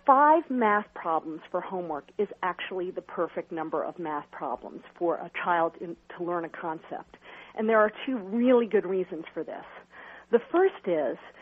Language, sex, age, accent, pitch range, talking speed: English, female, 50-69, American, 175-220 Hz, 170 wpm